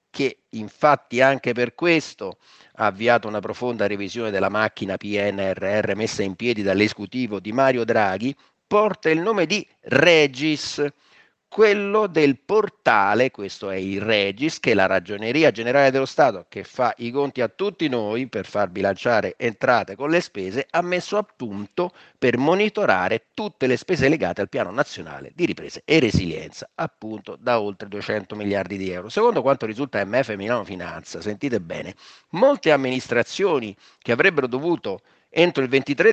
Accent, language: native, Italian